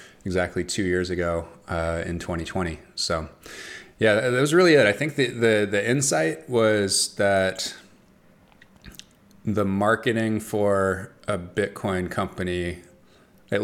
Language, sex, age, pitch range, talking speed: English, male, 20-39, 85-100 Hz, 125 wpm